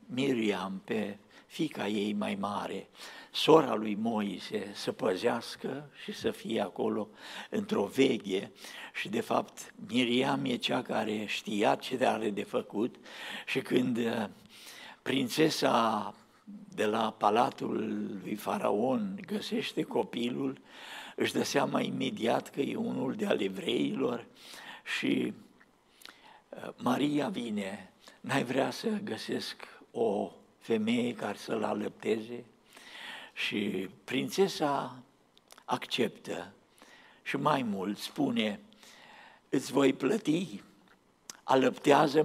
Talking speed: 100 wpm